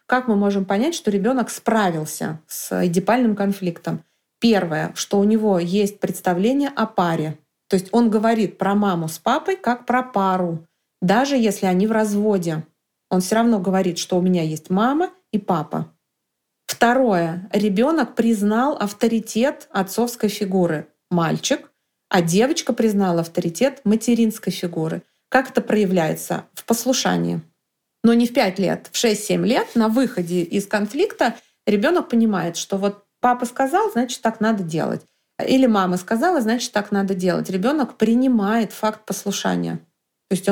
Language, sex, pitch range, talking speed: Russian, female, 190-235 Hz, 145 wpm